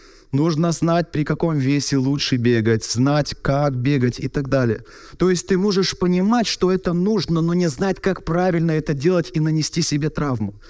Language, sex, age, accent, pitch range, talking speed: Russian, male, 30-49, native, 140-195 Hz, 180 wpm